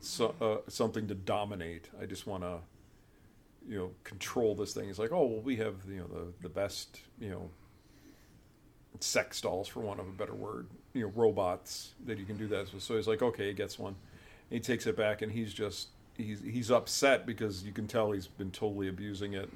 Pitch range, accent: 95-115 Hz, American